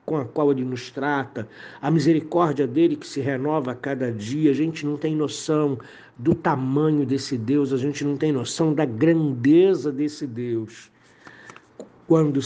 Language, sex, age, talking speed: Portuguese, male, 60-79, 165 wpm